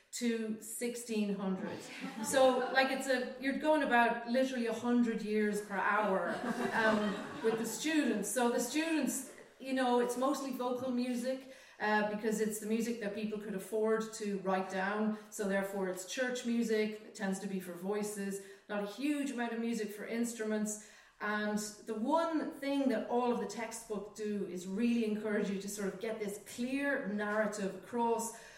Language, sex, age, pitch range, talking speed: English, female, 30-49, 210-250 Hz, 170 wpm